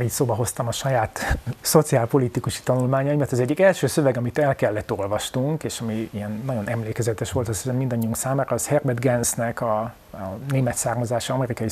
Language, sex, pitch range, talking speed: Hungarian, male, 120-145 Hz, 170 wpm